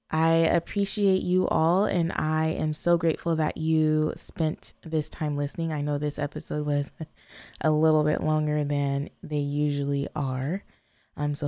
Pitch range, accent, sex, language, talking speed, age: 150-185 Hz, American, female, English, 155 wpm, 20-39